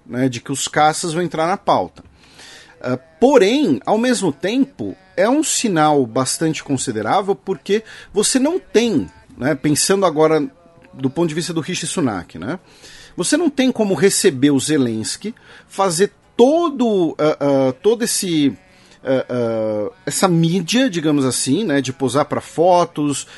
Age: 40-59